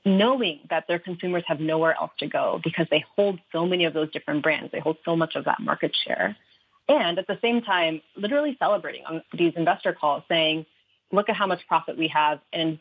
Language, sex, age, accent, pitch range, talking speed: English, female, 30-49, American, 160-200 Hz, 215 wpm